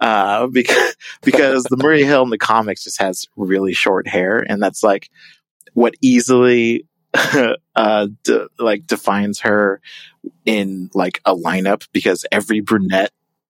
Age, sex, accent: 30-49, male, American